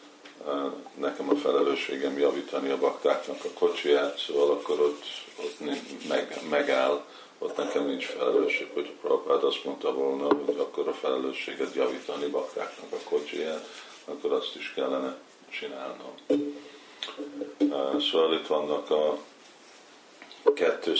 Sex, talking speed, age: male, 125 wpm, 50-69